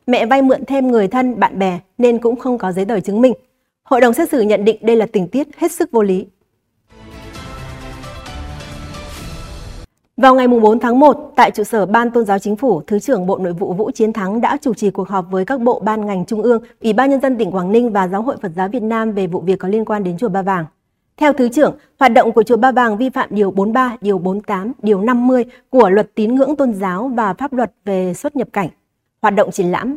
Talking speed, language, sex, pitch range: 240 wpm, Vietnamese, female, 195-250 Hz